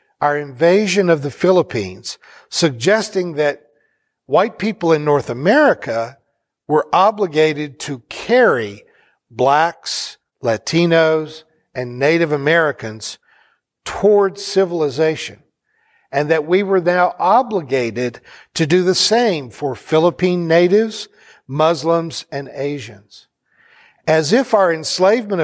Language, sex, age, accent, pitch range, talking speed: English, male, 60-79, American, 150-200 Hz, 100 wpm